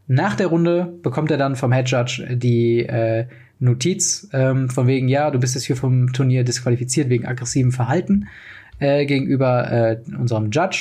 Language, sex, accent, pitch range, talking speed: German, male, German, 125-150 Hz, 170 wpm